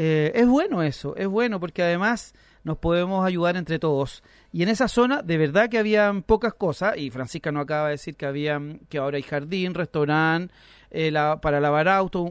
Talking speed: 200 wpm